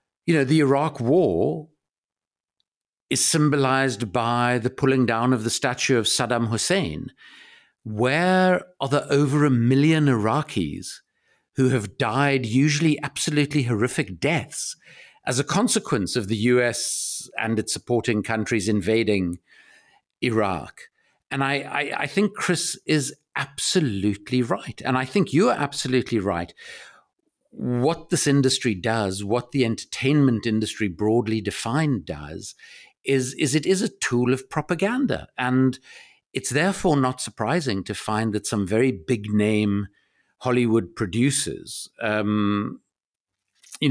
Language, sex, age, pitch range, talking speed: English, male, 50-69, 110-140 Hz, 130 wpm